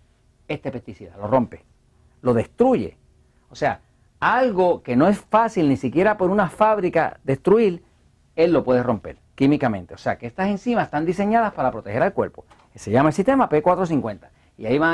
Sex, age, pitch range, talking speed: male, 40-59, 135-200 Hz, 175 wpm